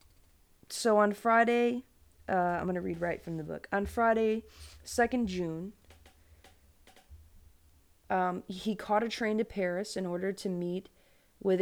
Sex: female